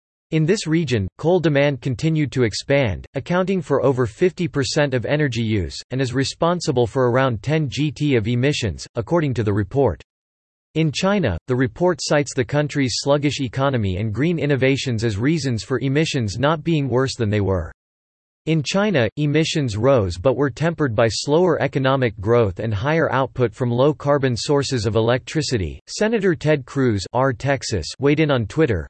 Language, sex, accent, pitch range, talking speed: English, male, American, 120-150 Hz, 160 wpm